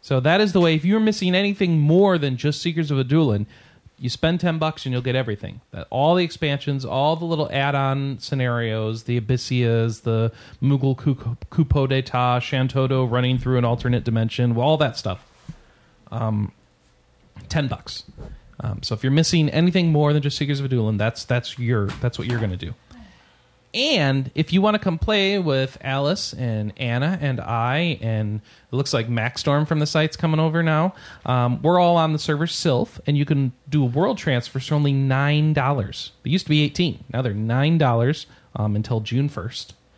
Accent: American